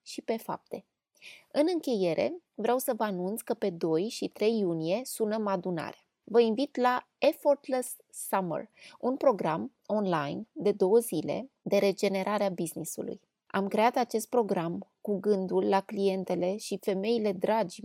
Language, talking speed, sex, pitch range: Romanian, 140 wpm, female, 190-235 Hz